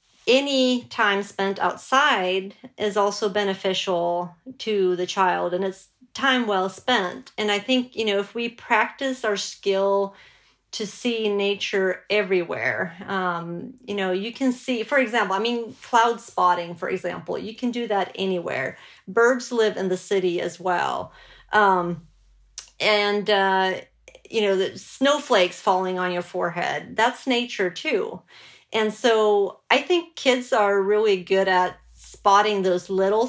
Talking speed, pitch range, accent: 145 wpm, 185-235 Hz, American